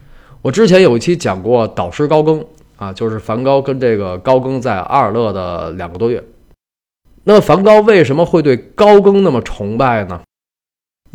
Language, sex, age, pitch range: Chinese, male, 20-39, 105-140 Hz